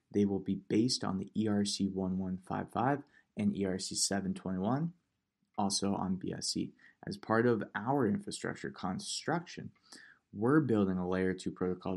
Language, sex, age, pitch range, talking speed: English, male, 20-39, 95-120 Hz, 120 wpm